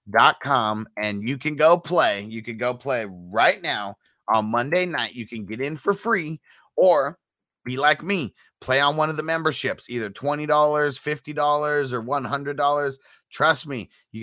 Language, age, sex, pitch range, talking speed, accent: English, 30-49, male, 115-145 Hz, 170 wpm, American